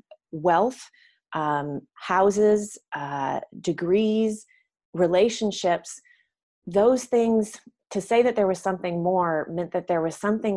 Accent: American